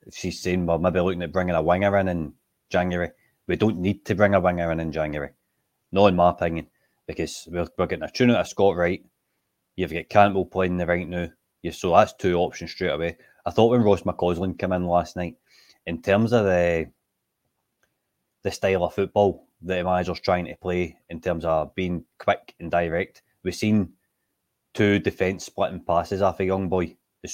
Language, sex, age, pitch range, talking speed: English, male, 20-39, 80-95 Hz, 200 wpm